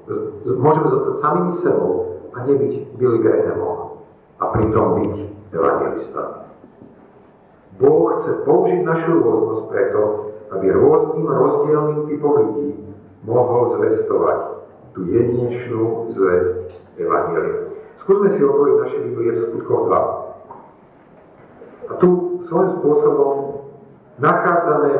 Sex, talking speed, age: male, 95 wpm, 50-69